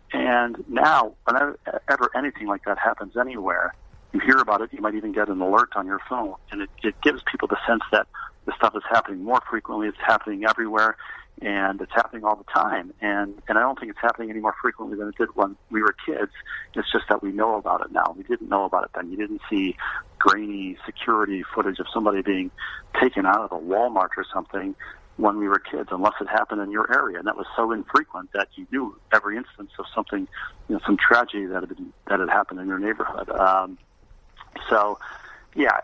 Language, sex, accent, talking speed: English, male, American, 215 wpm